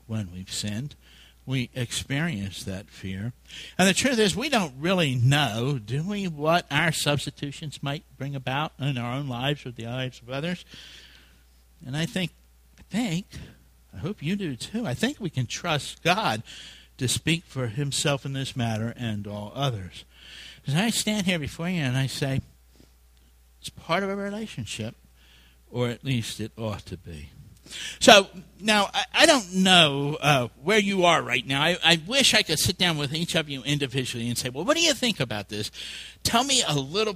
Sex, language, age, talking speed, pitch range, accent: male, English, 60-79, 185 wpm, 120-185 Hz, American